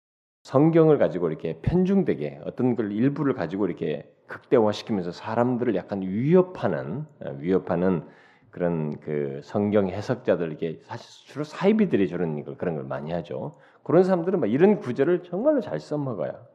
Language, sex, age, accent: Korean, male, 40-59, native